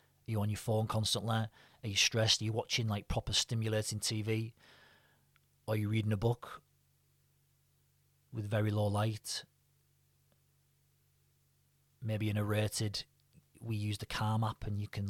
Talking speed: 145 wpm